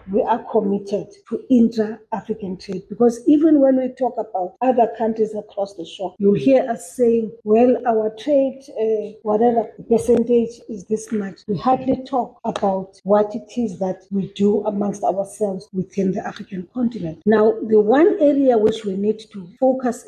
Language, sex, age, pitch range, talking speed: English, female, 40-59, 200-240 Hz, 165 wpm